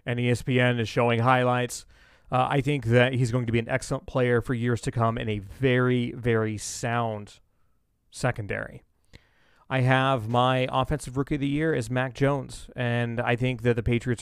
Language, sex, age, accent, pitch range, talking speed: English, male, 30-49, American, 115-130 Hz, 180 wpm